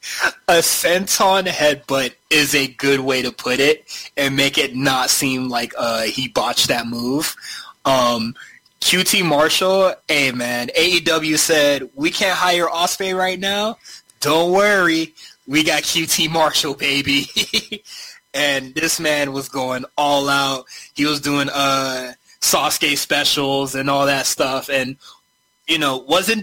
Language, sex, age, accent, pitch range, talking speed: English, male, 20-39, American, 125-155 Hz, 140 wpm